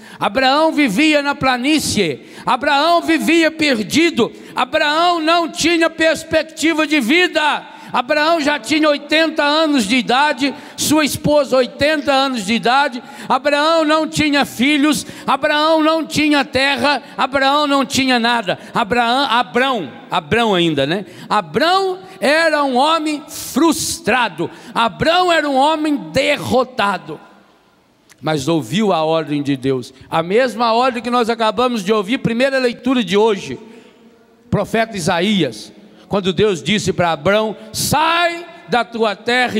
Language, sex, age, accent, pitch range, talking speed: Portuguese, male, 60-79, Brazilian, 200-290 Hz, 125 wpm